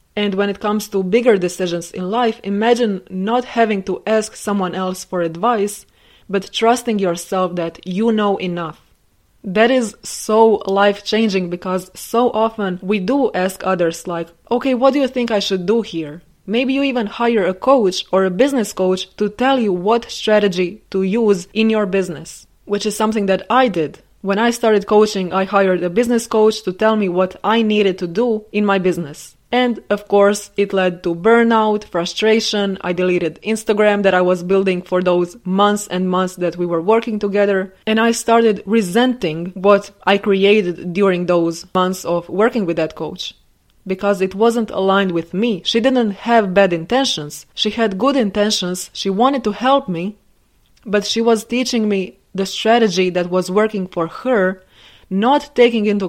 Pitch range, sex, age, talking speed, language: 185-225 Hz, female, 20-39, 180 wpm, English